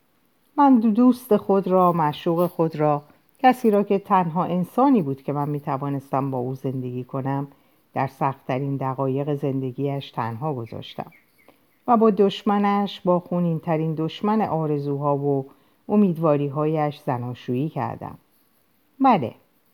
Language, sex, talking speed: Persian, female, 125 wpm